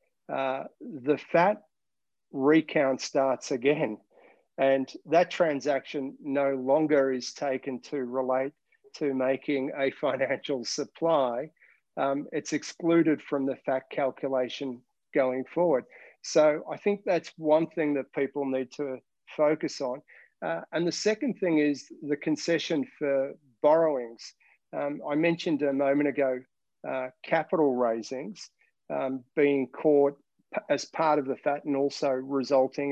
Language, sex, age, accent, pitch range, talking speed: English, male, 50-69, Australian, 135-150 Hz, 130 wpm